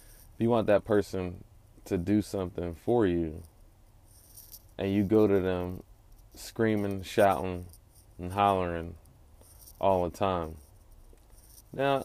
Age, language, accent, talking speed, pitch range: 30-49, English, American, 110 wpm, 90-110 Hz